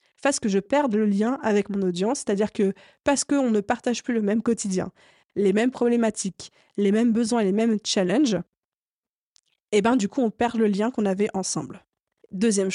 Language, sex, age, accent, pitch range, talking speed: French, female, 20-39, French, 200-235 Hz, 205 wpm